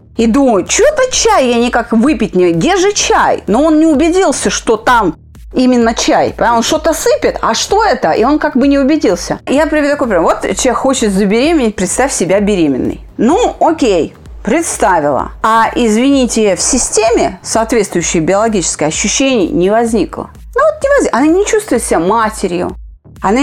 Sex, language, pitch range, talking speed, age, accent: female, Russian, 220-300 Hz, 165 wpm, 30-49, native